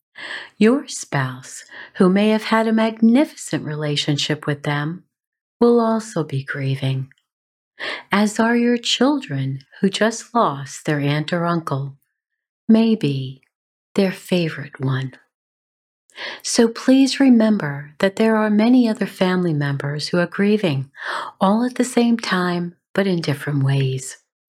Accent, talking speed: American, 125 wpm